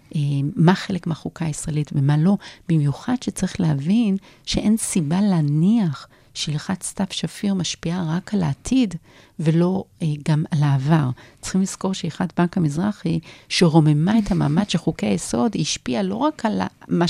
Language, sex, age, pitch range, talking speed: Hebrew, female, 40-59, 155-205 Hz, 135 wpm